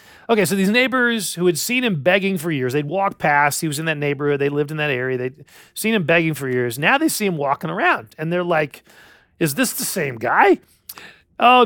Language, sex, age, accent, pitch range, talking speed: English, male, 40-59, American, 145-215 Hz, 230 wpm